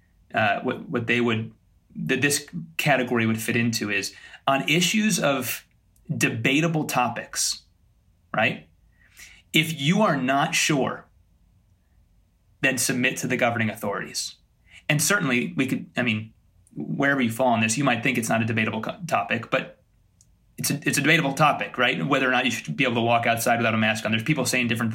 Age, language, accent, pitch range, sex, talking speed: 30-49, English, American, 110-140 Hz, male, 175 wpm